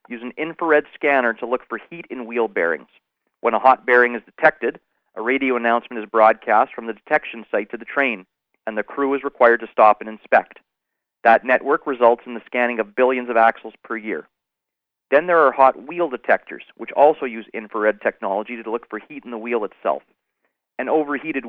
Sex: male